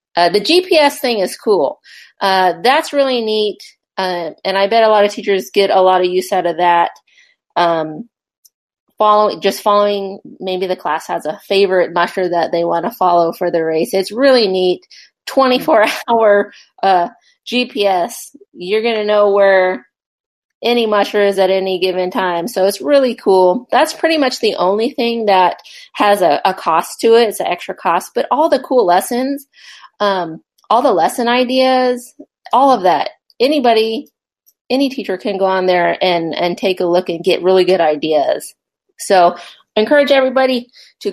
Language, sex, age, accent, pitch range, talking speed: English, female, 30-49, American, 190-245 Hz, 170 wpm